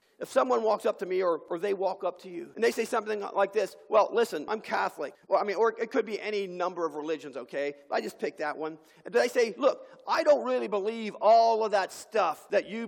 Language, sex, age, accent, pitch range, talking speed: English, male, 40-59, American, 190-245 Hz, 250 wpm